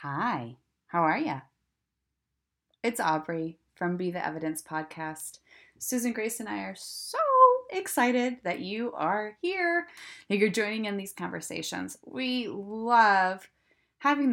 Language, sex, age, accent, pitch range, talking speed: English, female, 20-39, American, 200-290 Hz, 130 wpm